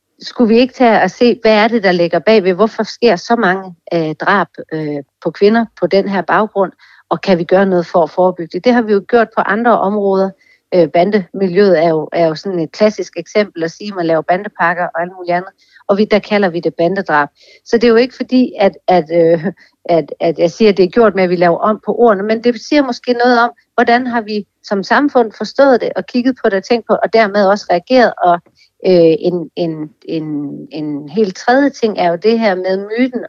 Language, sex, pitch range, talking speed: Danish, female, 175-220 Hz, 240 wpm